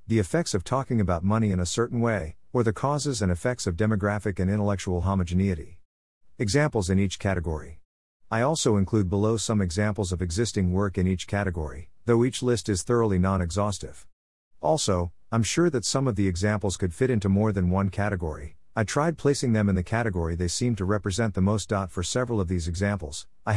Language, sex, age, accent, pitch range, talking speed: English, male, 50-69, American, 90-115 Hz, 195 wpm